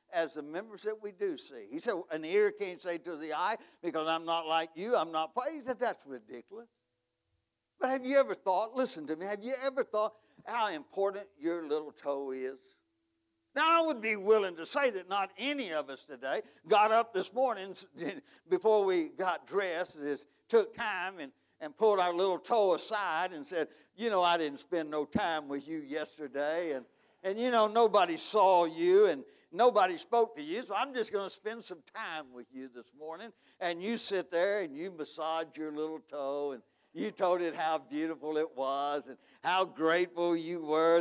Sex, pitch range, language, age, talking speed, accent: male, 150-215 Hz, English, 60-79, 200 wpm, American